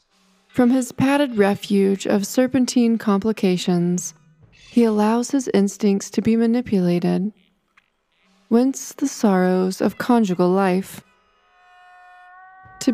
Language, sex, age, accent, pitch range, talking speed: English, female, 20-39, American, 185-250 Hz, 95 wpm